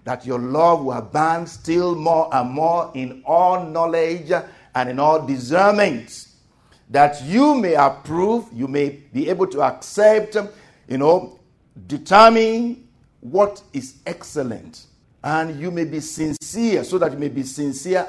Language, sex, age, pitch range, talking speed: English, male, 50-69, 130-190 Hz, 145 wpm